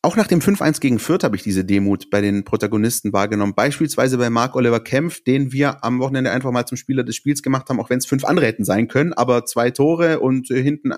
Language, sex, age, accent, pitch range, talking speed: German, male, 30-49, German, 120-145 Hz, 235 wpm